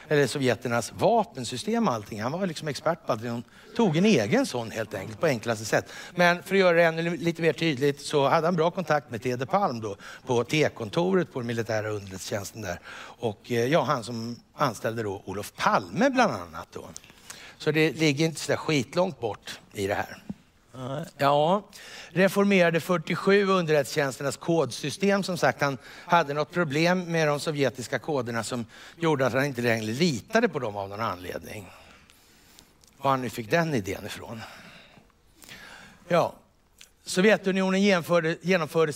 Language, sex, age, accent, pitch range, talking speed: Swedish, male, 60-79, native, 120-170 Hz, 160 wpm